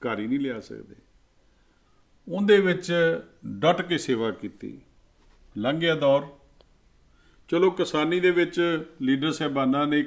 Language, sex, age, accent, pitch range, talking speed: English, male, 50-69, Indian, 115-145 Hz, 85 wpm